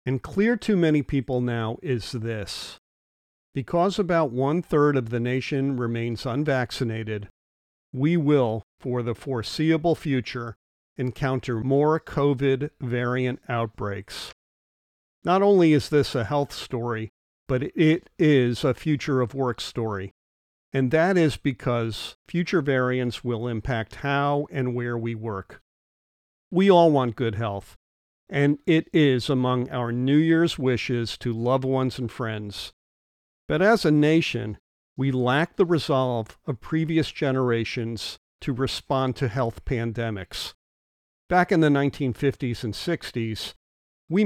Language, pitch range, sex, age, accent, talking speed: English, 115-145 Hz, male, 50-69, American, 125 wpm